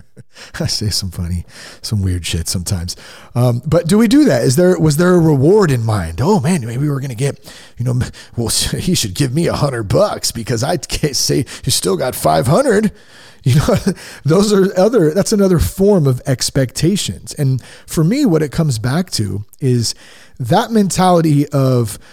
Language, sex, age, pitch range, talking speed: English, male, 40-59, 115-155 Hz, 190 wpm